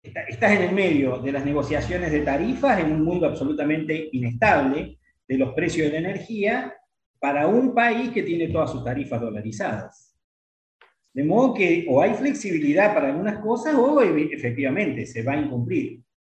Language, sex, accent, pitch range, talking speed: Spanish, male, Argentinian, 130-190 Hz, 165 wpm